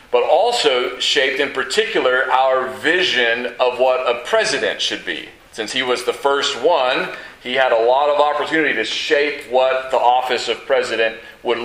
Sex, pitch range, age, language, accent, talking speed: male, 125-165 Hz, 40-59, English, American, 170 wpm